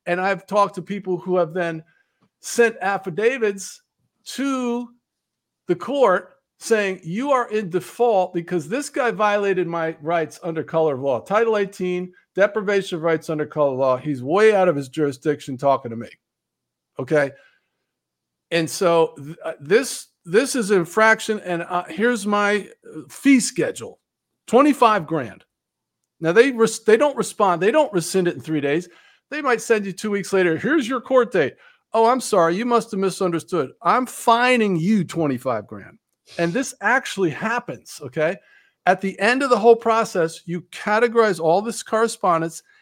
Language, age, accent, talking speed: English, 50-69, American, 165 wpm